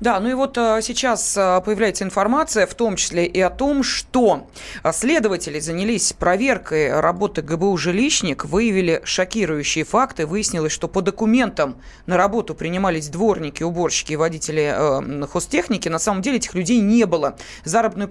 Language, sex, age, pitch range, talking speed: Russian, female, 20-39, 165-220 Hz, 150 wpm